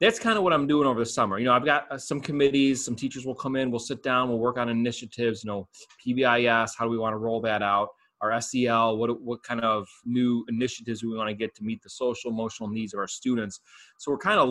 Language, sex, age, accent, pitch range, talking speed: English, male, 30-49, American, 110-130 Hz, 265 wpm